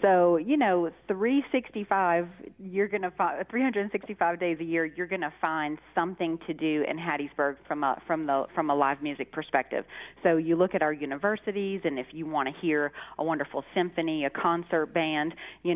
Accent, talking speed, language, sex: American, 175 wpm, English, female